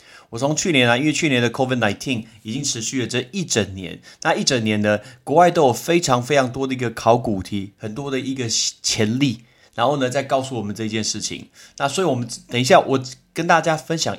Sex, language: male, Chinese